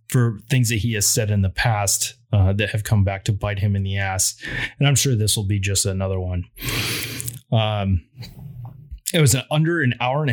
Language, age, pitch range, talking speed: English, 30-49, 100-125 Hz, 210 wpm